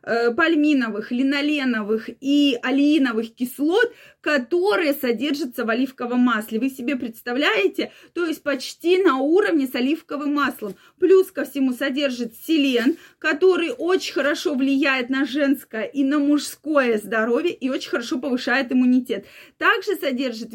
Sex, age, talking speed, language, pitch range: female, 20-39, 125 wpm, Russian, 250-320 Hz